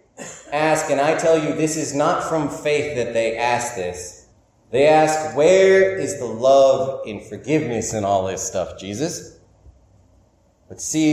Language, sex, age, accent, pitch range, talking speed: English, male, 30-49, American, 120-160 Hz, 165 wpm